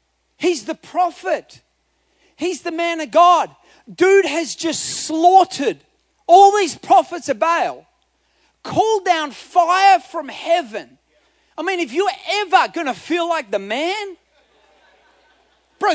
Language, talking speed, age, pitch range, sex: English, 130 wpm, 30-49, 295-365 Hz, male